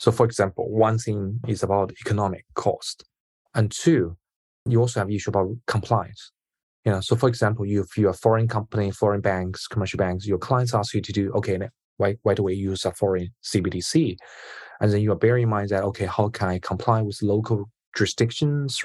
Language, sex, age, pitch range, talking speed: English, male, 20-39, 100-115 Hz, 195 wpm